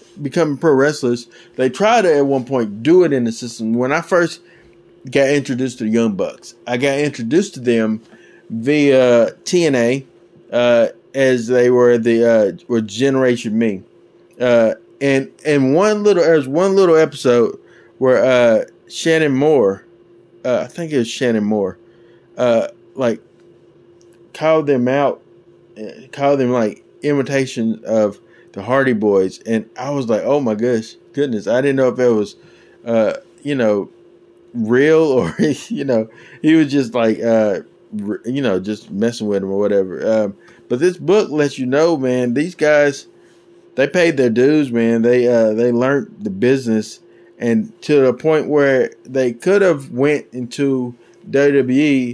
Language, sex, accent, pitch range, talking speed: English, male, American, 115-160 Hz, 160 wpm